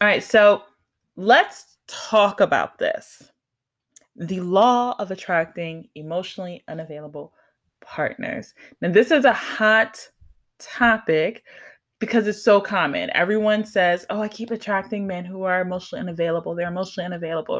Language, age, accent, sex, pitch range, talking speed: English, 20-39, American, female, 165-215 Hz, 130 wpm